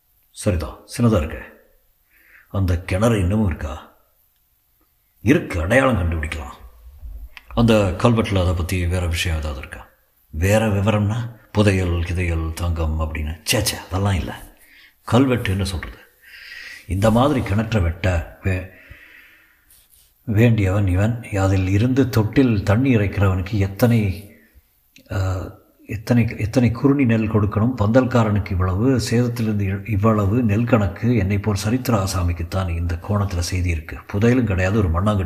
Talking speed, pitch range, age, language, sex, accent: 95 wpm, 85-110 Hz, 60-79, Tamil, male, native